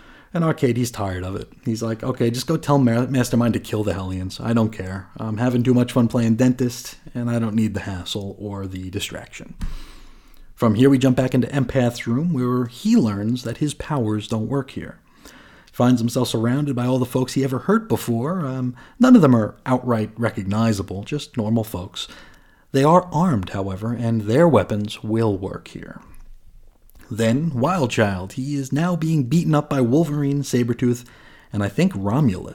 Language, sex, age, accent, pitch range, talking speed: English, male, 40-59, American, 110-135 Hz, 190 wpm